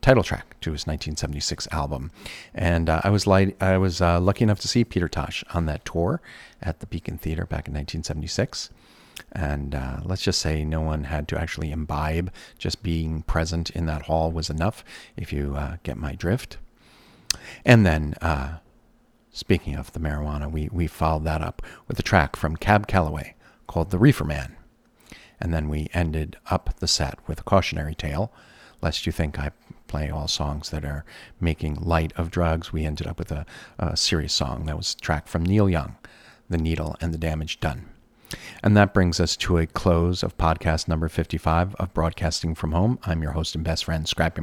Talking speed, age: 195 wpm, 40-59